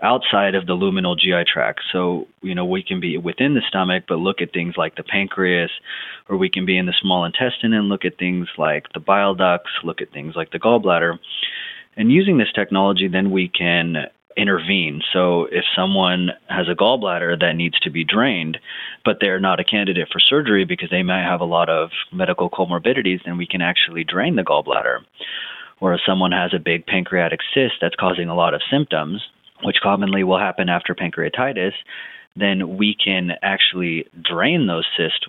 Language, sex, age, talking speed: English, male, 30-49, 190 wpm